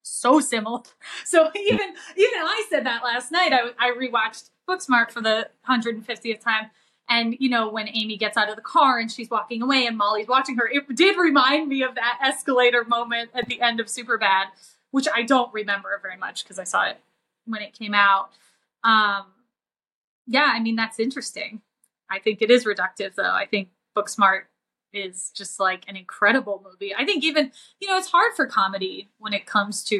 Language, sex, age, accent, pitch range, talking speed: English, female, 20-39, American, 205-260 Hz, 200 wpm